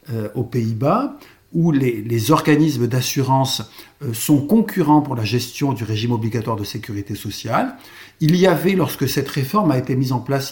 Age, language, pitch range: 60-79, French, 125-165 Hz